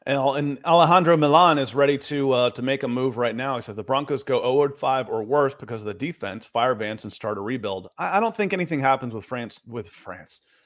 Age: 30-49